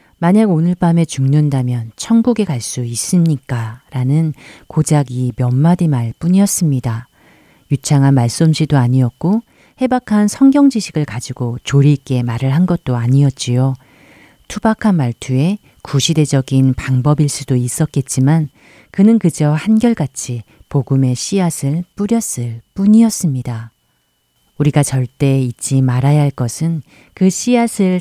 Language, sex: Korean, female